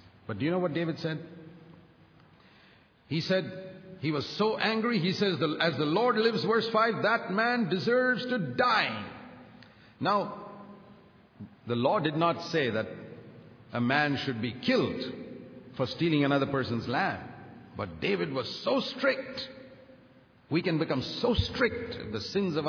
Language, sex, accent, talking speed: English, male, Indian, 150 wpm